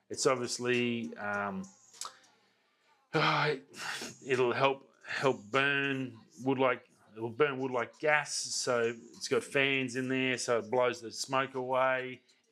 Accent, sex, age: Australian, male, 30-49